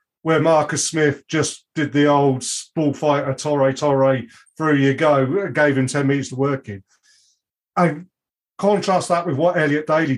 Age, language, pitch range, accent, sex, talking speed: 40-59, English, 140-180 Hz, British, male, 160 wpm